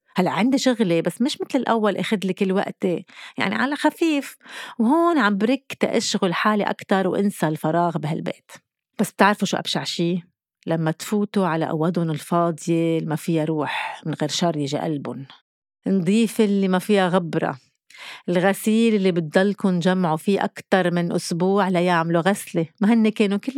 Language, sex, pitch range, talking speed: Arabic, female, 175-230 Hz, 150 wpm